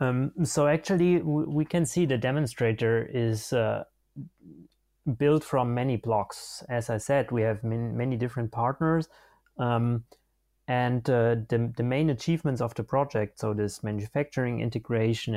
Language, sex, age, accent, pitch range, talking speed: English, male, 30-49, German, 115-140 Hz, 145 wpm